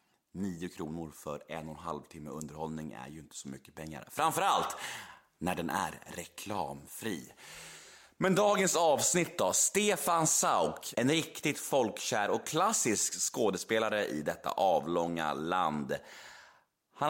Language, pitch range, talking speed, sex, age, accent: Swedish, 95-160 Hz, 130 wpm, male, 30-49, native